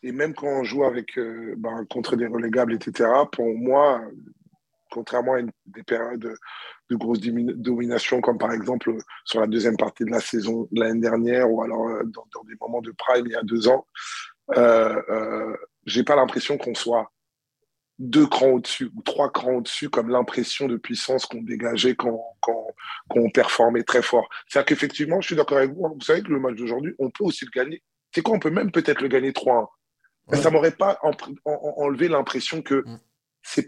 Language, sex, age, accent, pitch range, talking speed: French, male, 20-39, French, 115-150 Hz, 195 wpm